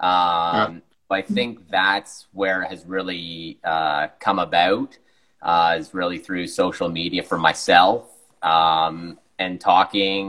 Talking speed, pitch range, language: 135 wpm, 85-95 Hz, English